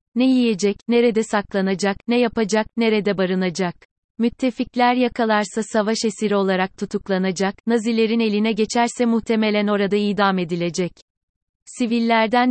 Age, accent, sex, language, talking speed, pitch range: 30-49, native, female, Turkish, 105 wpm, 195-230 Hz